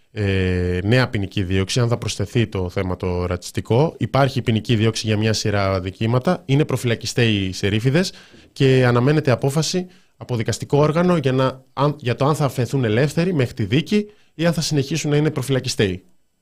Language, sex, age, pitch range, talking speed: Greek, male, 20-39, 100-135 Hz, 170 wpm